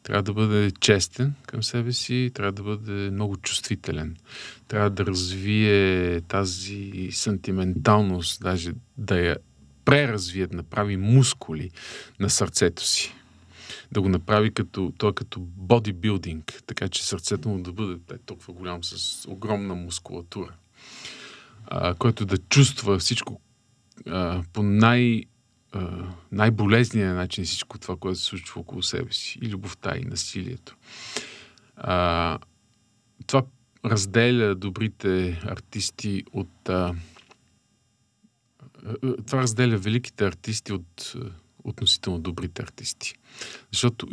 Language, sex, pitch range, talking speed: Bulgarian, male, 95-115 Hz, 110 wpm